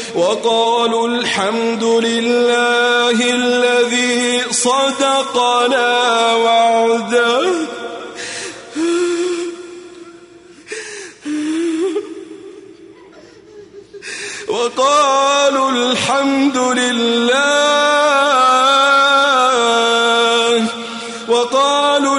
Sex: male